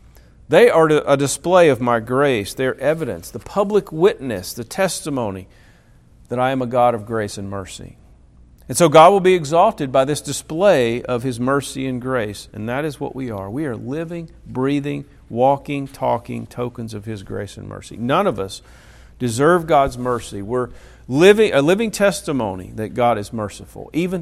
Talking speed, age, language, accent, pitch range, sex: 175 wpm, 50-69, English, American, 110-140 Hz, male